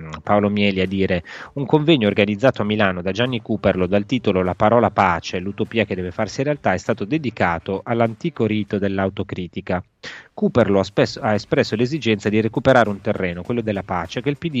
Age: 30-49